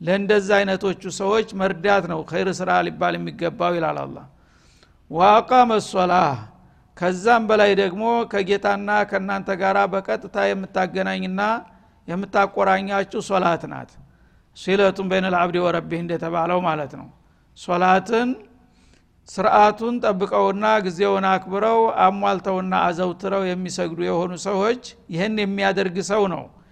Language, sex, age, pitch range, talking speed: Amharic, male, 60-79, 175-200 Hz, 105 wpm